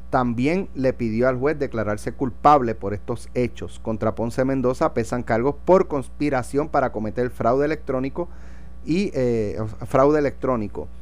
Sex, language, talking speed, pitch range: male, Spanish, 135 wpm, 110-145 Hz